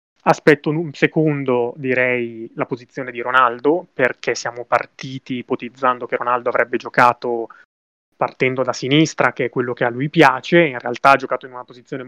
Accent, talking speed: native, 165 wpm